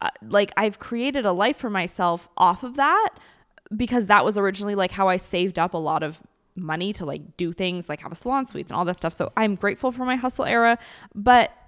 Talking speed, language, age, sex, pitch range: 230 wpm, English, 20-39, female, 180-220 Hz